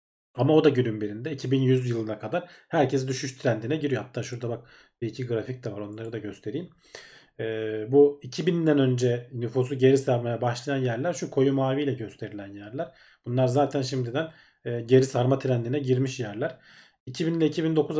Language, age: Turkish, 40-59